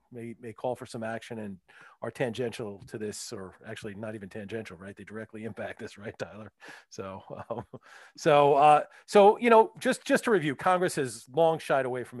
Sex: male